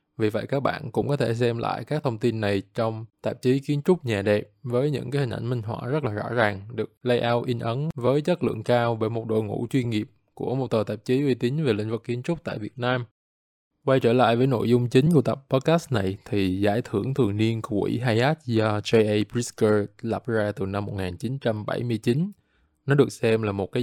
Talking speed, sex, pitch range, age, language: 235 wpm, male, 105-130 Hz, 20-39, Vietnamese